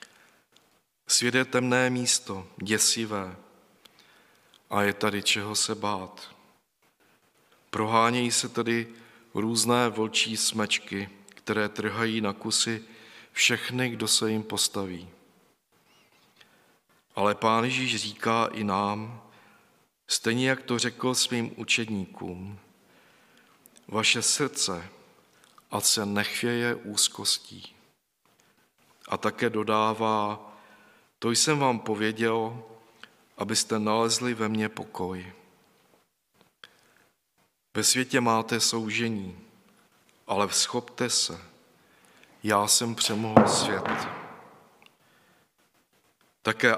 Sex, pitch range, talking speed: male, 105-120 Hz, 85 wpm